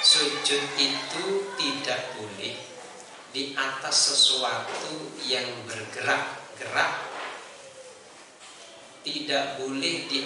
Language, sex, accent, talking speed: Indonesian, male, native, 70 wpm